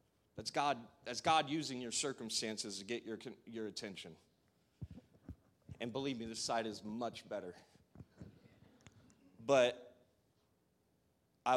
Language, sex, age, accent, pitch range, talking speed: English, male, 30-49, American, 105-125 Hz, 115 wpm